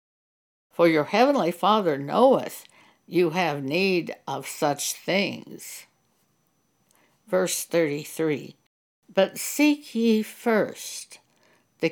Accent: American